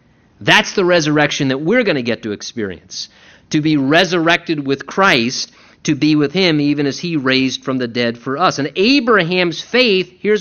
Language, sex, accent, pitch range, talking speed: English, male, American, 140-200 Hz, 185 wpm